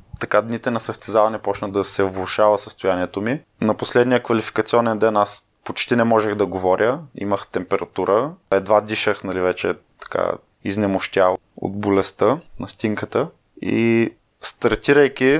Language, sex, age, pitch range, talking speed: Bulgarian, male, 20-39, 100-115 Hz, 130 wpm